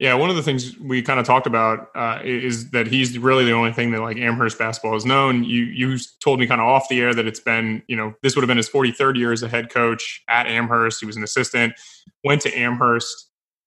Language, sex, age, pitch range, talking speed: English, male, 20-39, 120-155 Hz, 255 wpm